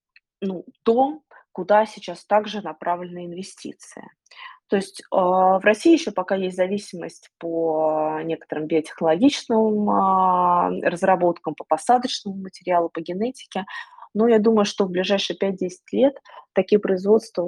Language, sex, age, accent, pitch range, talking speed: Russian, female, 20-39, native, 175-225 Hz, 115 wpm